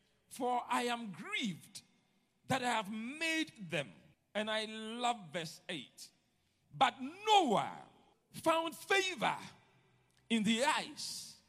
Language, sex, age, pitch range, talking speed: English, male, 50-69, 245-355 Hz, 110 wpm